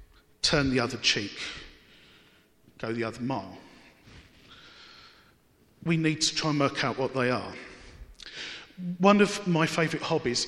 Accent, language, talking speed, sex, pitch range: British, English, 130 wpm, male, 155-185 Hz